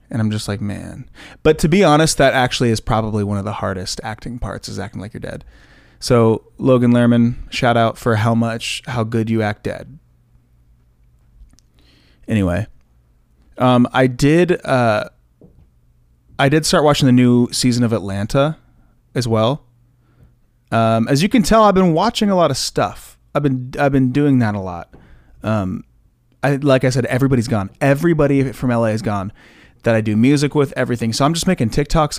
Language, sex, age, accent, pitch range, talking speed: English, male, 30-49, American, 105-130 Hz, 180 wpm